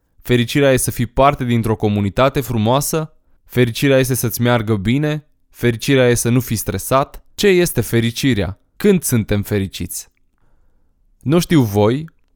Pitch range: 105-145 Hz